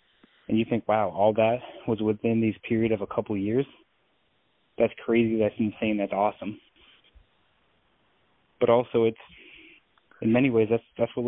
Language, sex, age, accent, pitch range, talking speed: English, male, 20-39, American, 100-115 Hz, 160 wpm